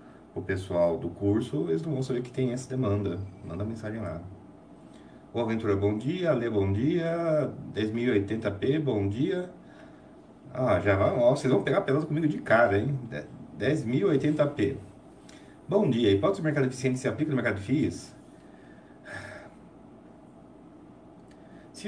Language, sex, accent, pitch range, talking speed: Portuguese, male, Brazilian, 90-120 Hz, 135 wpm